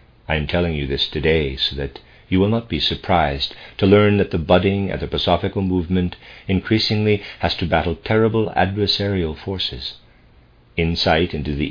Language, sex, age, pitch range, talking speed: English, male, 50-69, 75-100 Hz, 155 wpm